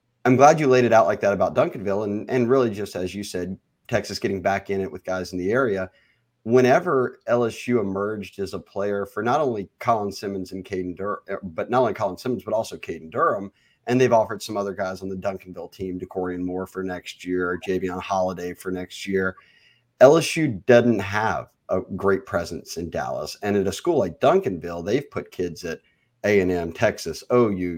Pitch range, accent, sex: 95-120 Hz, American, male